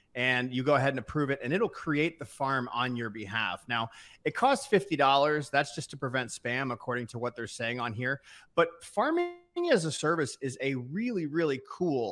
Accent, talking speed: American, 205 wpm